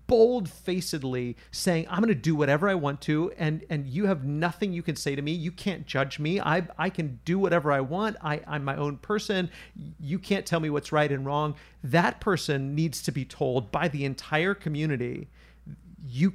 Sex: male